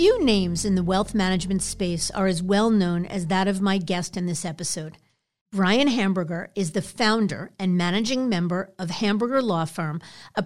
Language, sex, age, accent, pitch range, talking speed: English, female, 50-69, American, 175-220 Hz, 185 wpm